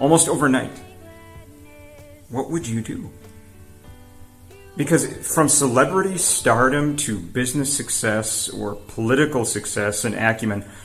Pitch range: 95-130 Hz